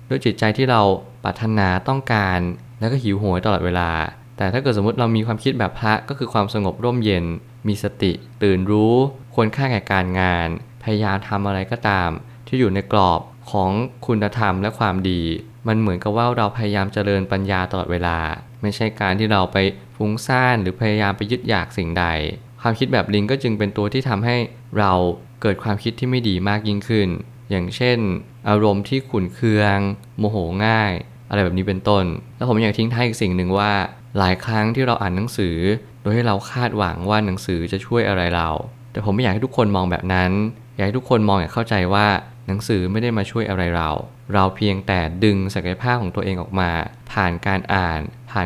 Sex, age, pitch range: male, 20-39, 95-115 Hz